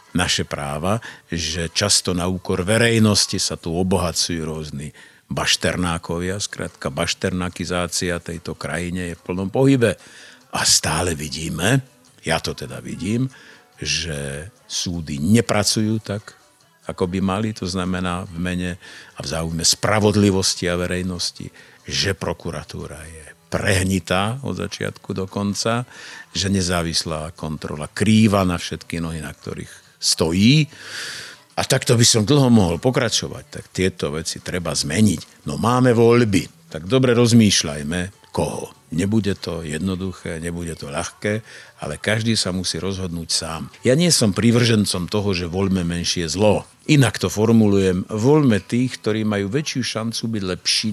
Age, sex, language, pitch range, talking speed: 50-69, male, Slovak, 85-110 Hz, 130 wpm